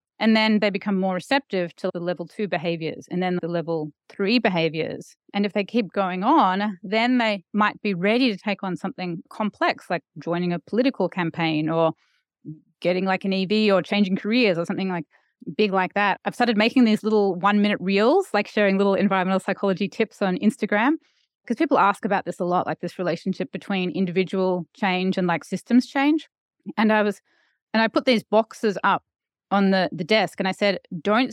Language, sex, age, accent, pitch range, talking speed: English, female, 30-49, Australian, 180-220 Hz, 195 wpm